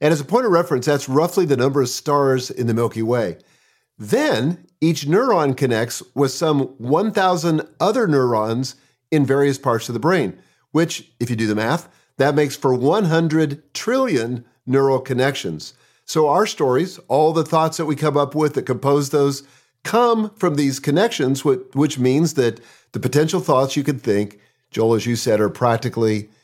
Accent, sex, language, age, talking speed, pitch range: American, male, English, 50-69, 180 wpm, 125-160 Hz